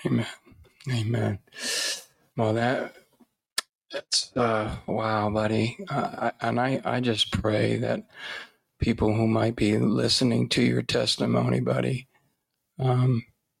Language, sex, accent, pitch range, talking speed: English, male, American, 110-125 Hz, 105 wpm